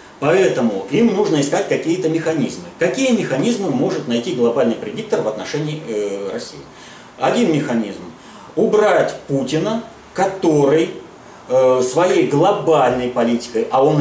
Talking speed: 115 wpm